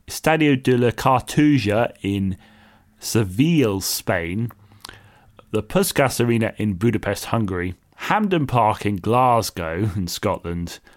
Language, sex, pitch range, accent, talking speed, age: English, male, 105-135 Hz, British, 105 wpm, 30-49